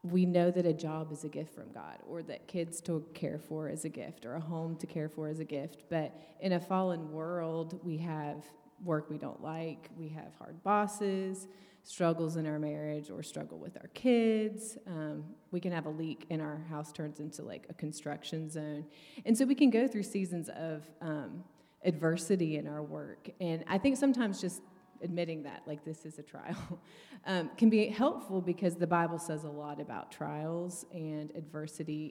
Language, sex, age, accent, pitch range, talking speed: English, female, 30-49, American, 155-180 Hz, 200 wpm